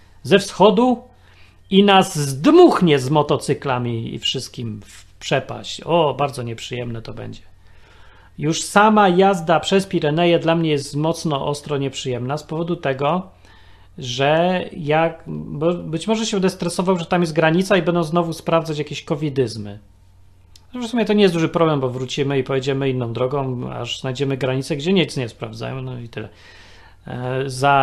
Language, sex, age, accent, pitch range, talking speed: Polish, male, 40-59, native, 115-170 Hz, 150 wpm